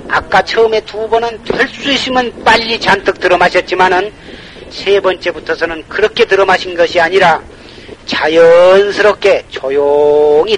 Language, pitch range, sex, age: Korean, 155-210 Hz, male, 40-59